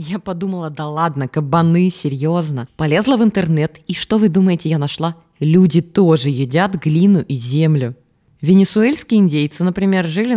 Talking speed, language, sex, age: 145 wpm, Russian, female, 20-39